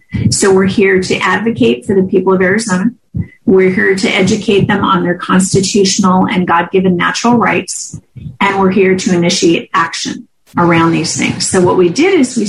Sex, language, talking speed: female, English, 180 wpm